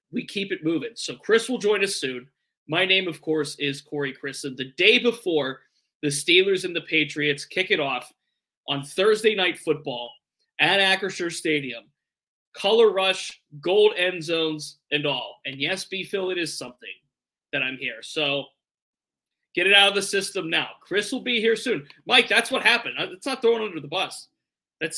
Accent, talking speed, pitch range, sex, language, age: American, 180 wpm, 145-190 Hz, male, English, 20-39